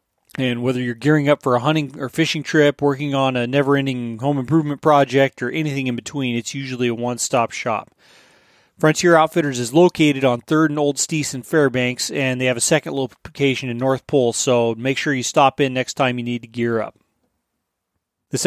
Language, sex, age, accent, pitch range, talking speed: English, male, 30-49, American, 125-140 Hz, 200 wpm